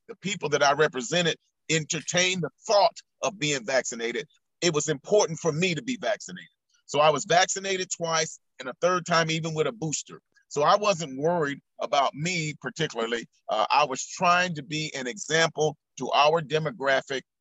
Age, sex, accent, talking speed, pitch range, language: 40-59, male, American, 170 wpm, 150-190 Hz, English